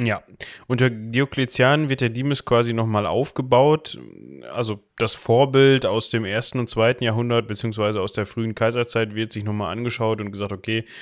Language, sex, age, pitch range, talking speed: German, male, 10-29, 110-125 Hz, 165 wpm